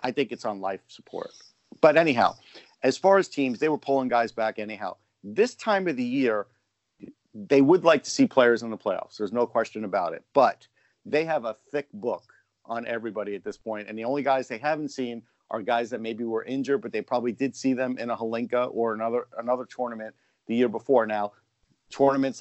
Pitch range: 115-135 Hz